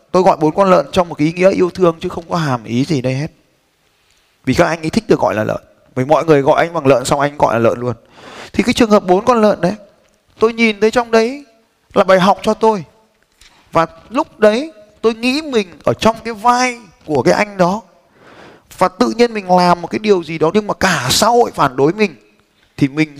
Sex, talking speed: male, 240 wpm